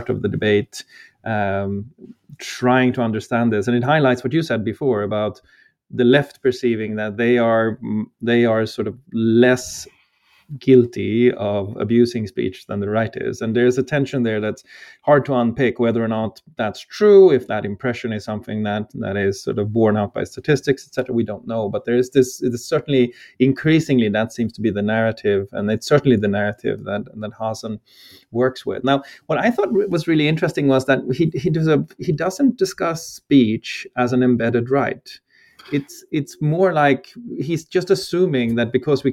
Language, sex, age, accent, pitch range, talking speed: English, male, 30-49, Swedish, 110-135 Hz, 185 wpm